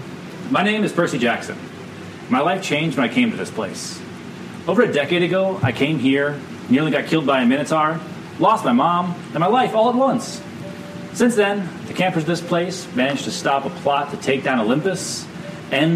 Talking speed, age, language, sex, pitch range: 200 wpm, 30-49, English, male, 145-190 Hz